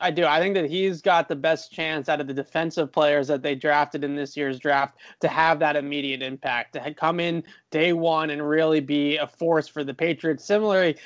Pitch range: 145-170 Hz